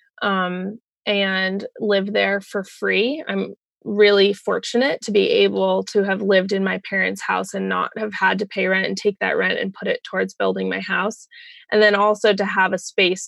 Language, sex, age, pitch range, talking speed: English, female, 20-39, 190-220 Hz, 200 wpm